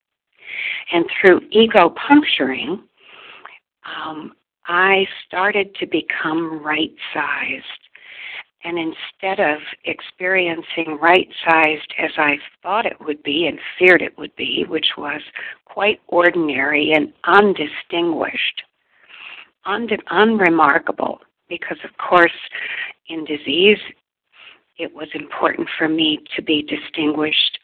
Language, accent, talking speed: English, American, 100 wpm